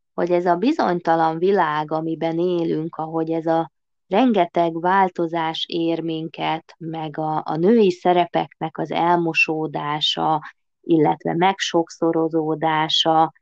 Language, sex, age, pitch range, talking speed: Hungarian, female, 20-39, 160-195 Hz, 105 wpm